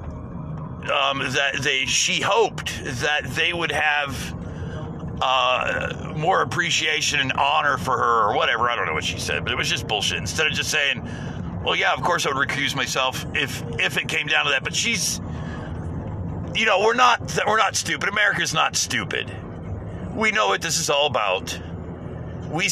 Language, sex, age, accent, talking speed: English, male, 50-69, American, 180 wpm